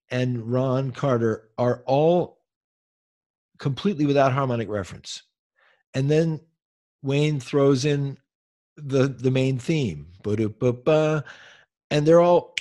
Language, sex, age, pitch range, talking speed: English, male, 50-69, 115-150 Hz, 100 wpm